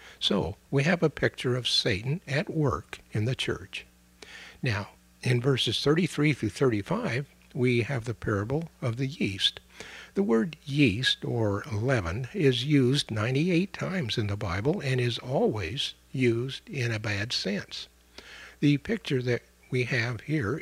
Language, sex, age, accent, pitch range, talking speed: English, male, 60-79, American, 110-155 Hz, 150 wpm